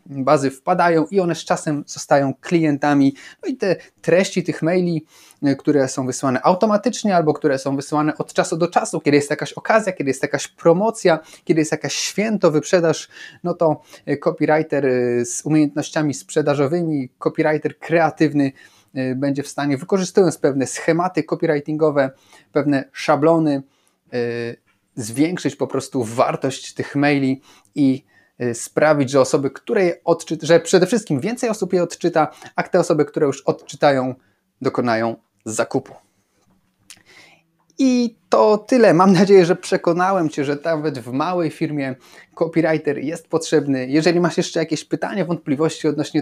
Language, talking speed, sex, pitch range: Polish, 140 wpm, male, 140-170 Hz